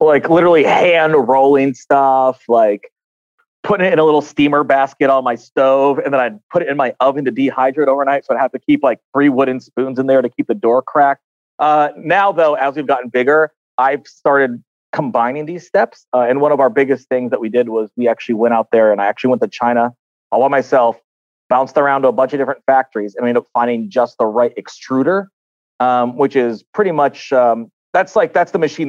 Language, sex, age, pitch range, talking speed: English, male, 30-49, 125-150 Hz, 225 wpm